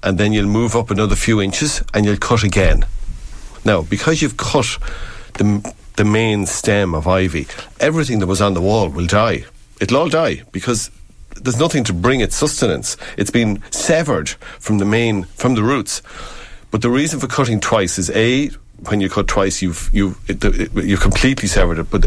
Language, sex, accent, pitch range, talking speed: English, male, Irish, 95-115 Hz, 195 wpm